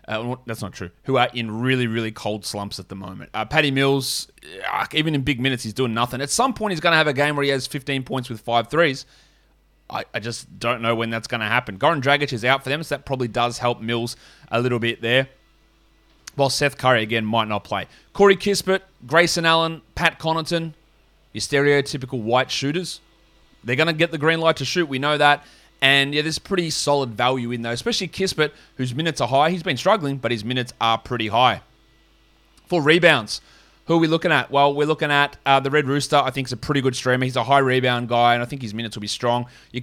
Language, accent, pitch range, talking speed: English, Australian, 120-155 Hz, 235 wpm